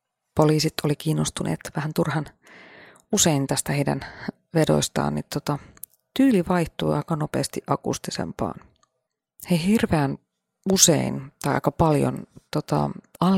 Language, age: Finnish, 30-49